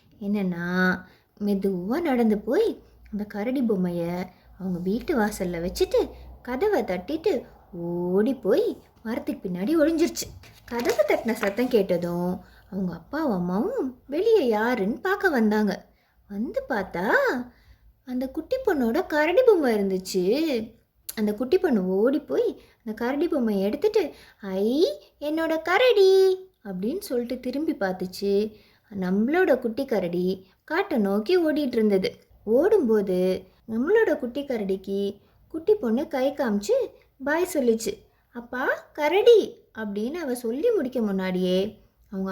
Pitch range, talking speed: 200-310 Hz, 110 wpm